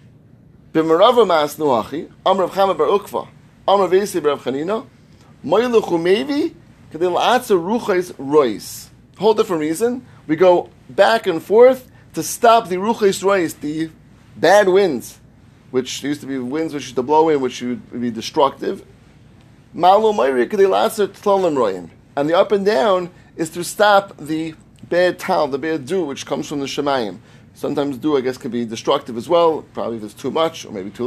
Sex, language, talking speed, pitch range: male, English, 125 wpm, 130-185 Hz